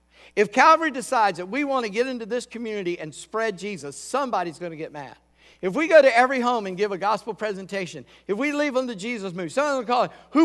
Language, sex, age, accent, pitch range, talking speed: English, male, 50-69, American, 170-240 Hz, 240 wpm